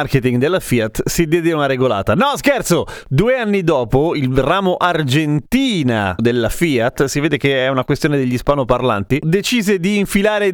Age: 30-49